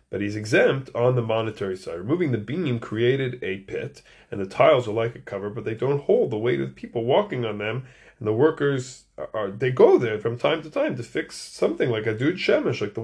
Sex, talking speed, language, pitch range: male, 235 wpm, English, 105-145 Hz